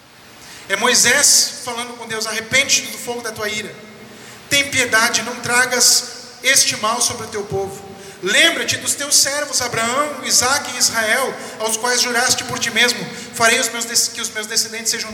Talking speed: 170 wpm